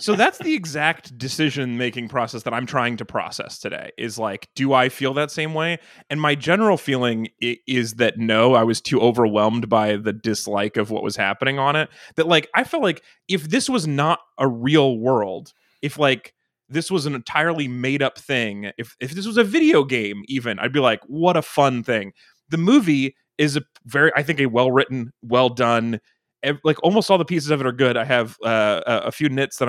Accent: American